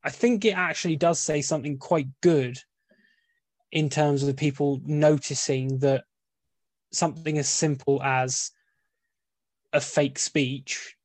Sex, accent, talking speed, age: male, British, 125 wpm, 10-29